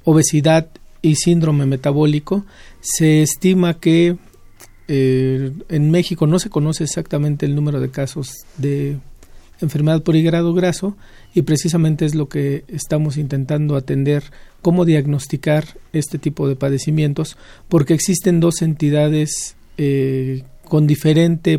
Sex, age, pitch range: male, 40-59, 145-165 Hz